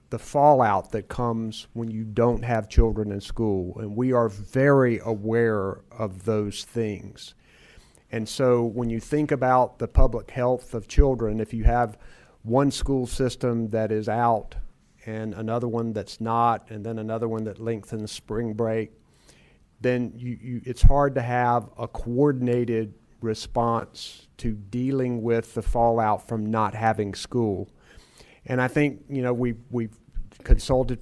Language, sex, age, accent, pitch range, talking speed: English, male, 40-59, American, 110-125 Hz, 150 wpm